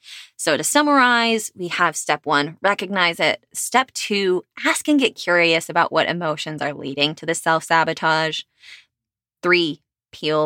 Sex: female